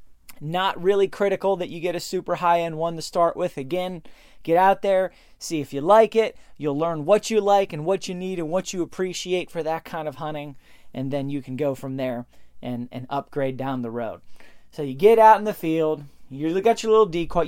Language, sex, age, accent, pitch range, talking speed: English, male, 30-49, American, 145-195 Hz, 225 wpm